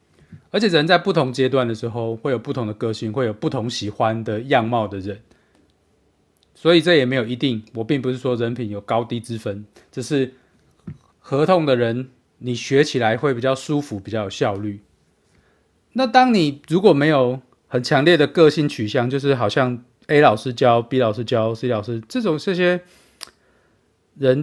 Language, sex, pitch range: Chinese, male, 110-155 Hz